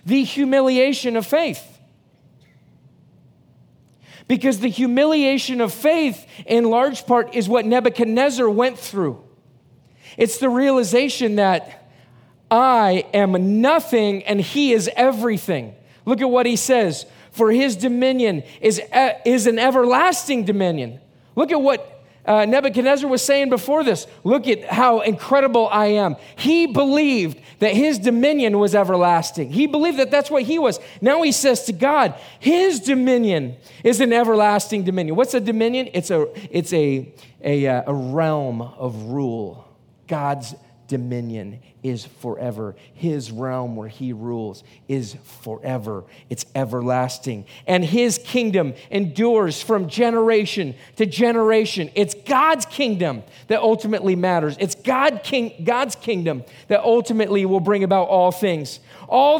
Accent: American